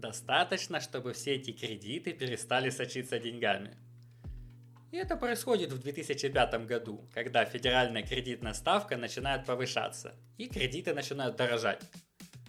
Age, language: 20-39, English